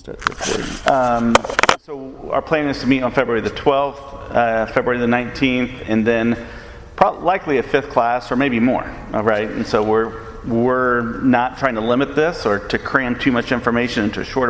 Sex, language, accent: male, English, American